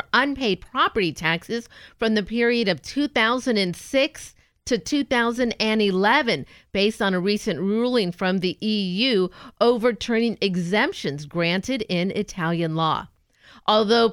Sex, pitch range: female, 175-230 Hz